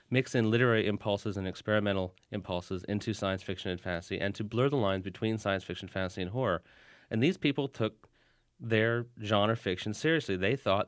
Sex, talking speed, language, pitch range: male, 180 wpm, English, 100-120 Hz